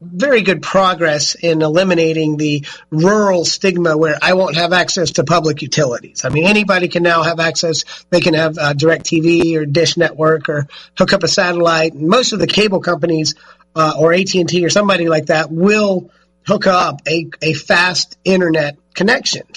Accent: American